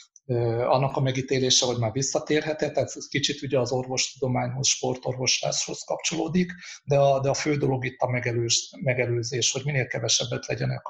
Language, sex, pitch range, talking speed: Hungarian, male, 125-145 Hz, 150 wpm